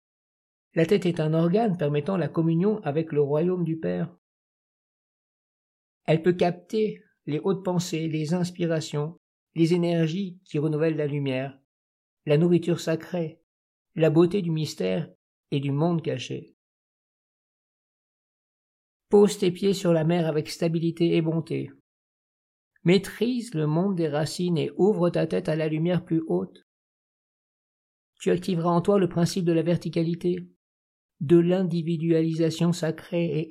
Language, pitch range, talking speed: French, 150-180 Hz, 135 wpm